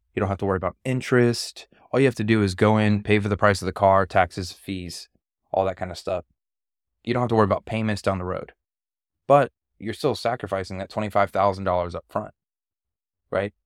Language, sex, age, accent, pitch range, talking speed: English, male, 20-39, American, 95-110 Hz, 210 wpm